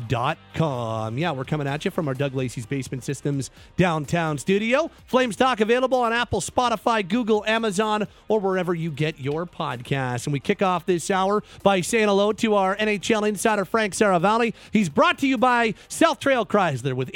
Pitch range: 155-195 Hz